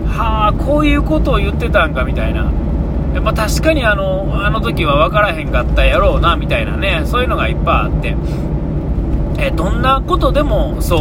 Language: Japanese